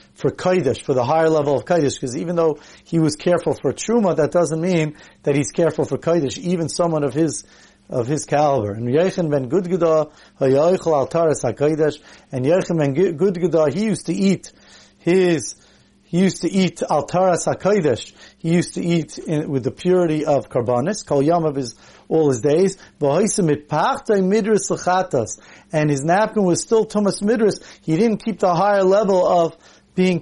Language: English